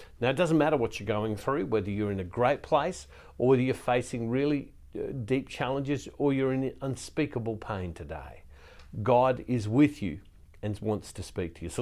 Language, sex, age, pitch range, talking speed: English, male, 50-69, 90-140 Hz, 195 wpm